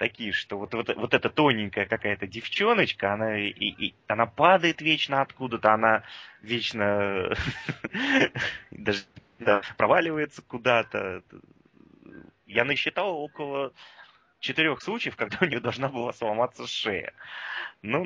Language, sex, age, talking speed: Russian, male, 20-39, 115 wpm